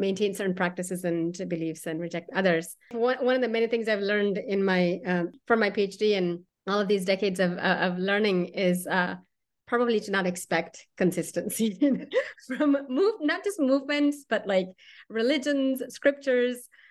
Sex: female